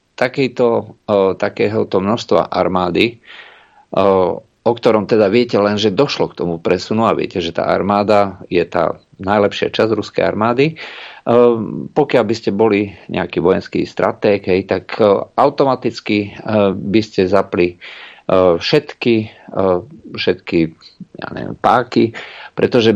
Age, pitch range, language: 50-69, 90-115 Hz, Slovak